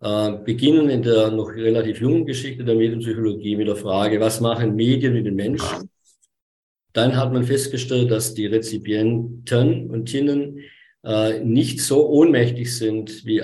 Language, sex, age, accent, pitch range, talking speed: German, male, 50-69, German, 110-130 Hz, 150 wpm